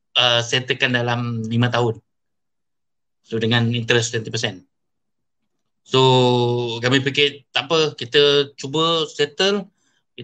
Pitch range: 115-150 Hz